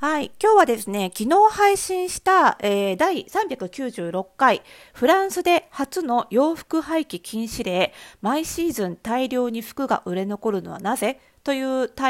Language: Japanese